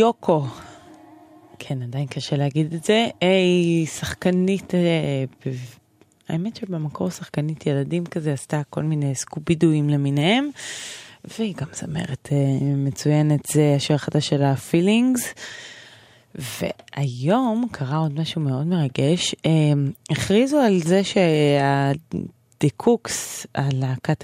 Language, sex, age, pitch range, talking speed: Hebrew, female, 20-39, 140-175 Hz, 105 wpm